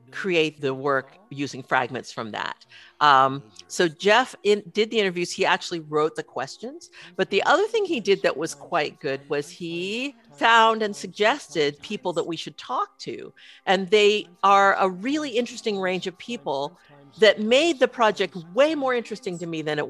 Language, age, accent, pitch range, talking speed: English, 50-69, American, 145-200 Hz, 180 wpm